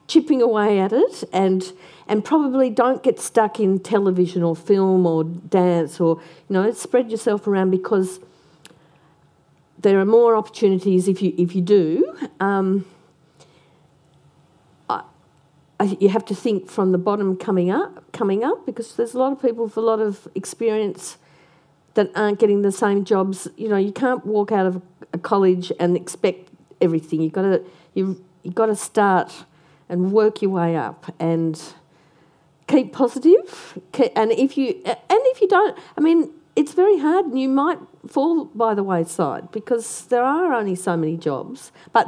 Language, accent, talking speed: English, Australian, 170 wpm